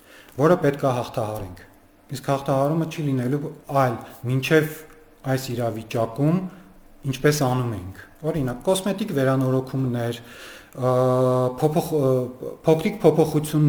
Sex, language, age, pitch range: male, Russian, 40-59, 120-150 Hz